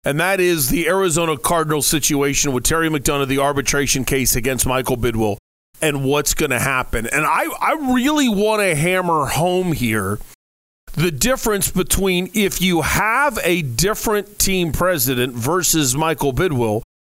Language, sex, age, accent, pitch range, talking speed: English, male, 40-59, American, 145-190 Hz, 150 wpm